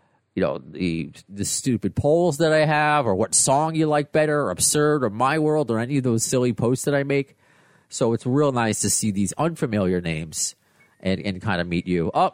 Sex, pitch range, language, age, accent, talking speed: male, 100-145 Hz, English, 30-49, American, 220 wpm